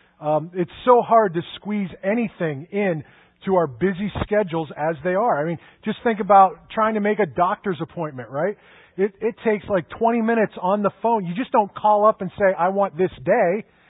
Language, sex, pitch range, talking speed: English, male, 170-220 Hz, 205 wpm